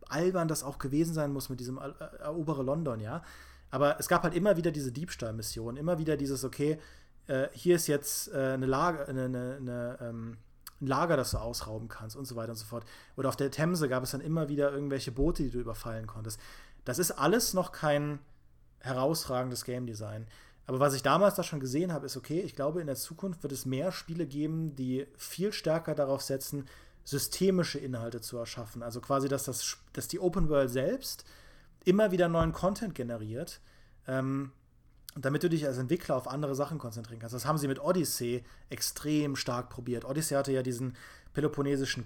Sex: male